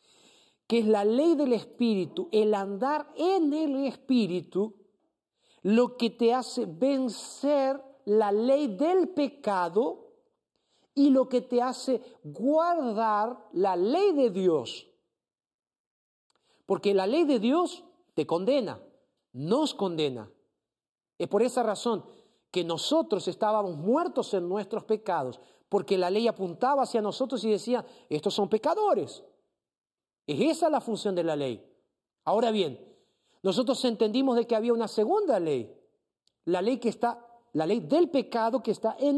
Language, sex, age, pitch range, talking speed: Spanish, male, 50-69, 180-265 Hz, 135 wpm